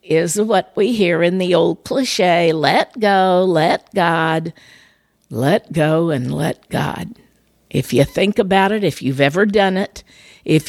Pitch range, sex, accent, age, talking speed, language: 160-190 Hz, female, American, 50-69, 155 wpm, English